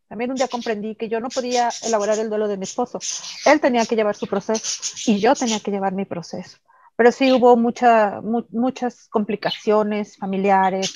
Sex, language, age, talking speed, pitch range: female, Spanish, 40-59, 190 wpm, 210-265 Hz